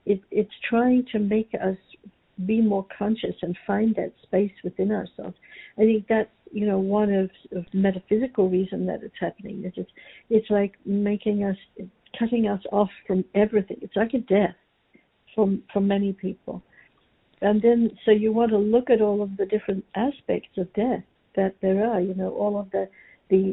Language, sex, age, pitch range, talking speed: English, female, 60-79, 195-220 Hz, 185 wpm